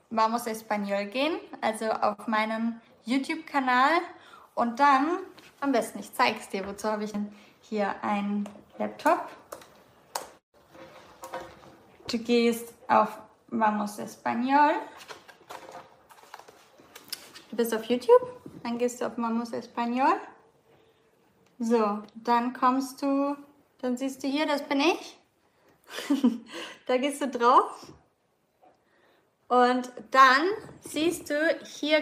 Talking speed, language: 105 wpm, English